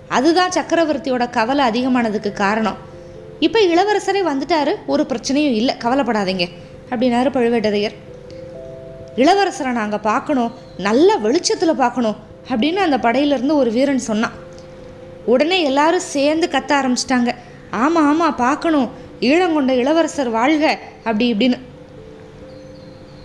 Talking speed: 105 wpm